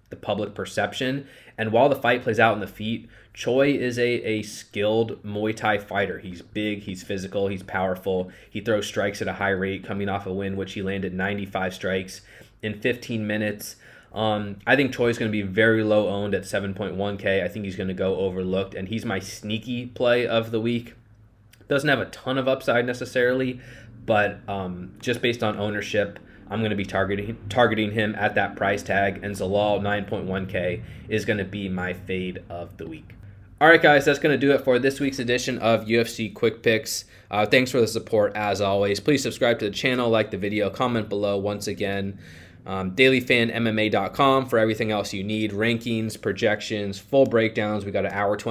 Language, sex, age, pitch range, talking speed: English, male, 20-39, 100-115 Hz, 195 wpm